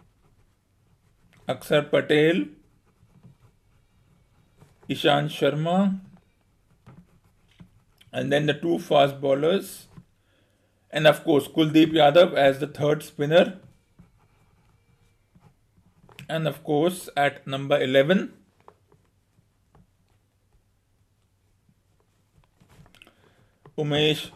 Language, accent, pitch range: English, Indian, 135-165 Hz